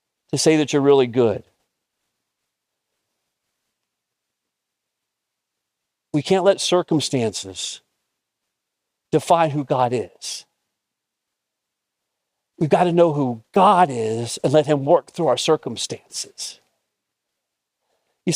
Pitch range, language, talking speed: 130-180 Hz, English, 95 wpm